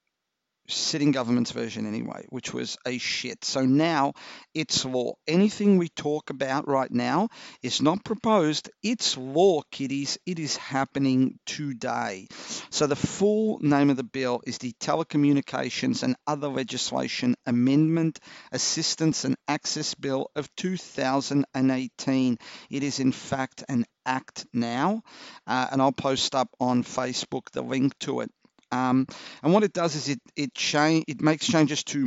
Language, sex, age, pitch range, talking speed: English, male, 50-69, 130-155 Hz, 150 wpm